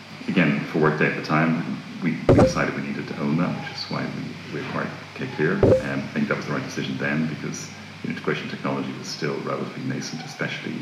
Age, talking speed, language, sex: 30-49, 225 wpm, English, male